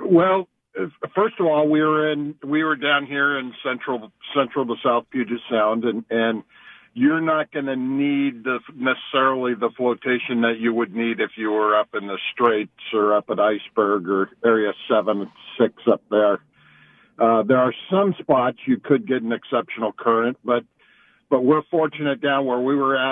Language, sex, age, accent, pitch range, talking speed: English, male, 50-69, American, 115-145 Hz, 180 wpm